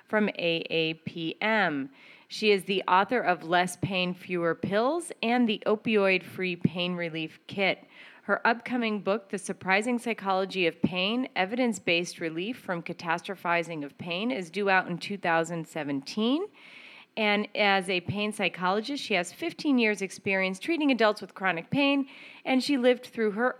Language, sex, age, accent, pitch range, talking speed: English, female, 30-49, American, 180-230 Hz, 140 wpm